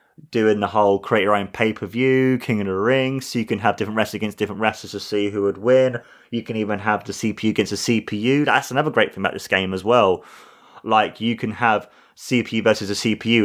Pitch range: 105-125 Hz